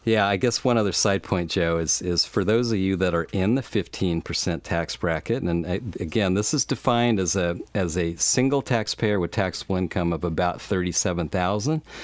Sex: male